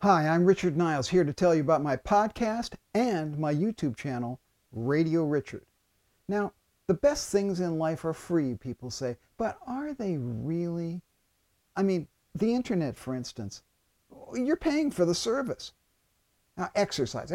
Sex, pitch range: male, 135-200 Hz